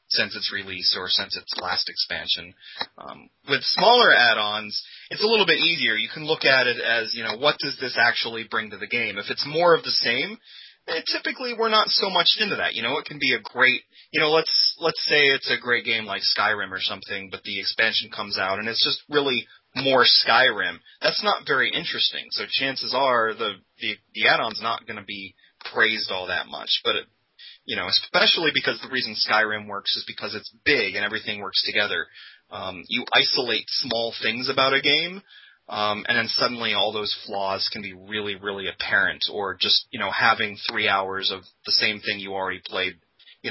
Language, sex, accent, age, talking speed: English, male, American, 30-49, 205 wpm